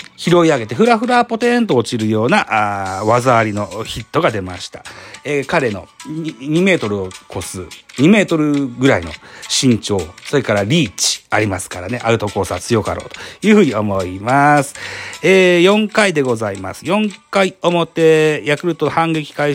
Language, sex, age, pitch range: Japanese, male, 40-59, 115-165 Hz